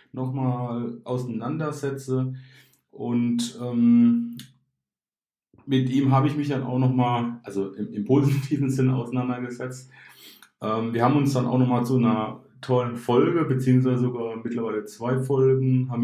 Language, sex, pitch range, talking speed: German, male, 120-135 Hz, 130 wpm